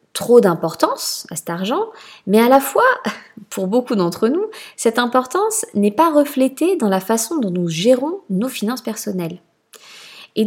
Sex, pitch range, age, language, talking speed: female, 175-235 Hz, 20-39, French, 160 wpm